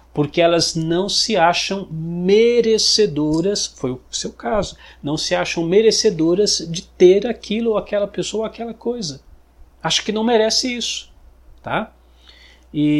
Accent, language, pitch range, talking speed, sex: Brazilian, Portuguese, 120-195 Hz, 140 wpm, male